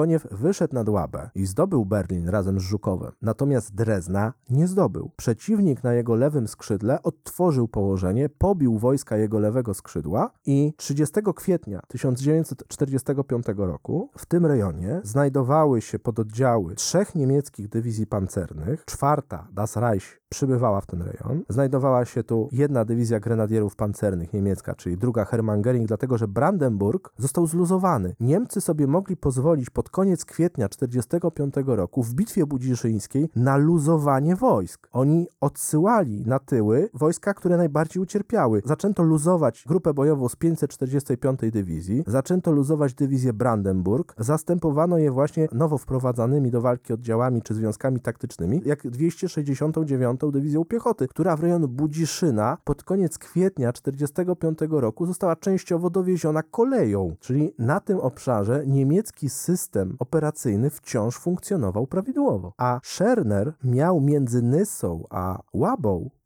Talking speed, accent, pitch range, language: 130 wpm, native, 115-160 Hz, Polish